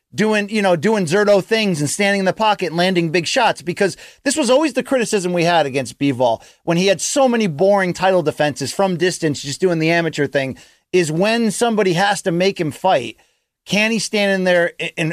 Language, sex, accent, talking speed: English, male, American, 215 wpm